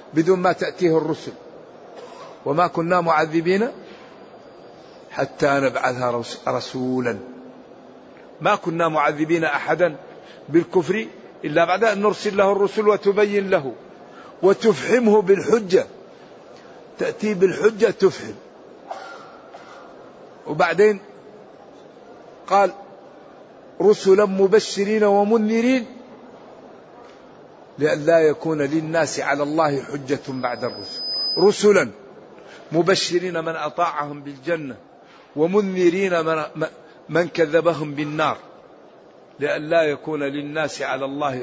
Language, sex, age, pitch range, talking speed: Arabic, male, 50-69, 155-200 Hz, 80 wpm